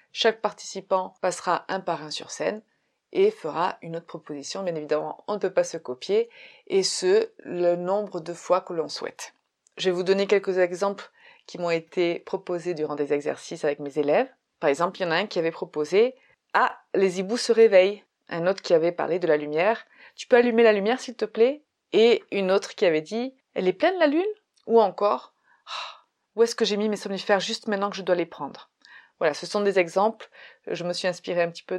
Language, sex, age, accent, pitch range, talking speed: French, female, 30-49, French, 175-225 Hz, 220 wpm